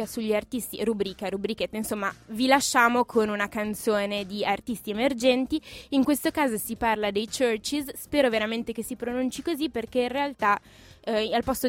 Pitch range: 205-255 Hz